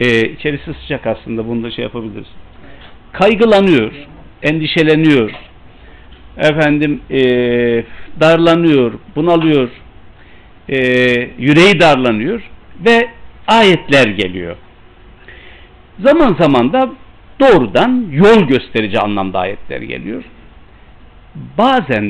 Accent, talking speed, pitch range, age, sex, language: native, 80 wpm, 105-150 Hz, 60-79, male, Turkish